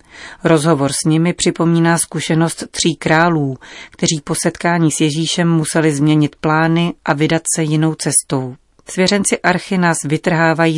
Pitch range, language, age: 145-165 Hz, Czech, 40-59